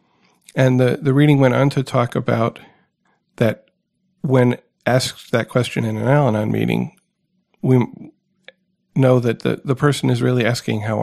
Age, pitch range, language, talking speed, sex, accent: 50-69, 120-150 Hz, English, 150 wpm, male, American